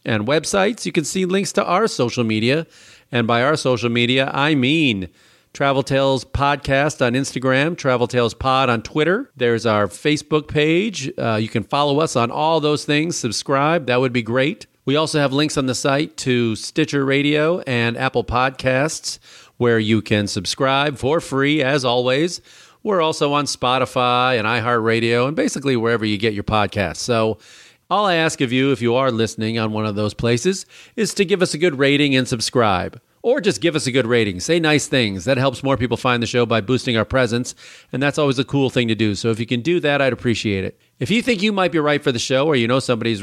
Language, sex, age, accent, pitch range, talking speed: English, male, 40-59, American, 115-150 Hz, 215 wpm